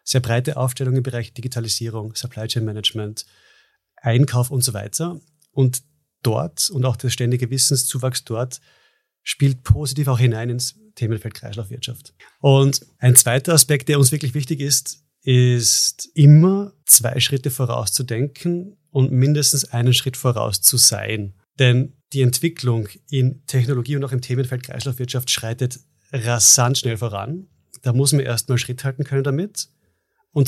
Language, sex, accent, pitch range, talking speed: German, male, German, 120-140 Hz, 140 wpm